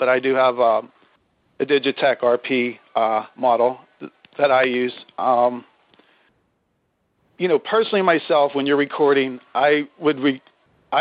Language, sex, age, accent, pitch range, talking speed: English, male, 40-59, American, 125-145 Hz, 135 wpm